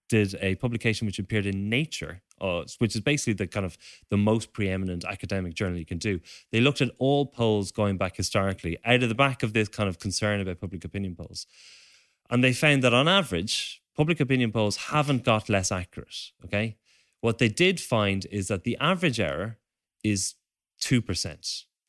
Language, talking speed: English, 185 wpm